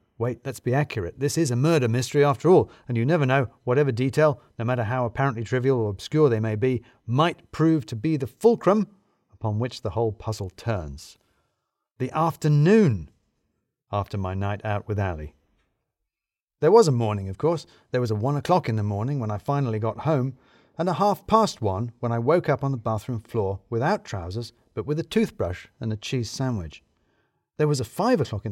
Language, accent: English, British